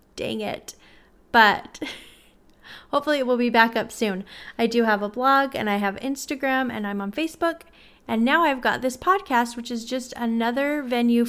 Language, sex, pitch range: English, female, 220-270 Hz